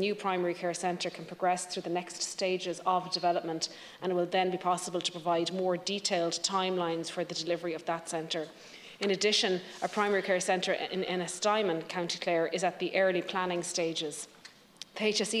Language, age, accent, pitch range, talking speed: English, 30-49, Irish, 175-195 Hz, 185 wpm